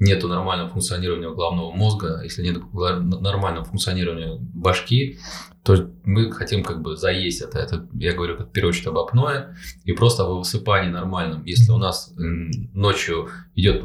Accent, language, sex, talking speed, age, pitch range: native, Russian, male, 145 wpm, 20-39, 90-115 Hz